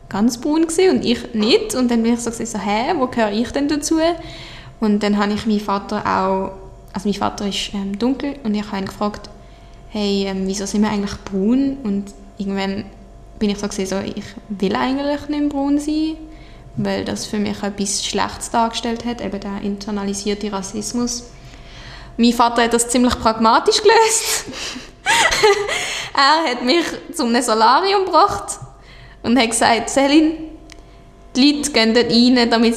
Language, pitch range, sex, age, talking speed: German, 205-260 Hz, female, 20-39, 170 wpm